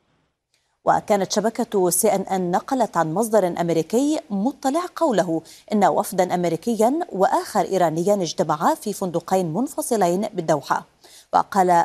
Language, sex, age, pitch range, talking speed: Arabic, female, 30-49, 175-225 Hz, 110 wpm